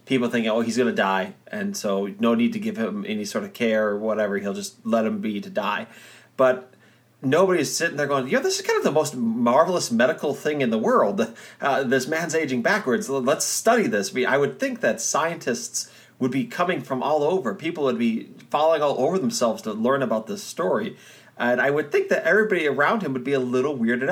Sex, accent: male, American